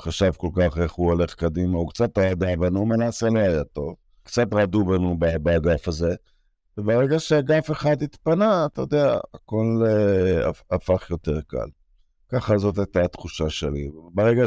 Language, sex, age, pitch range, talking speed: Hebrew, male, 50-69, 85-125 Hz, 160 wpm